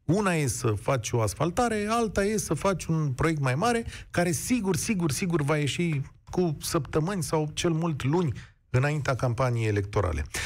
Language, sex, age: Romanian, male, 40-59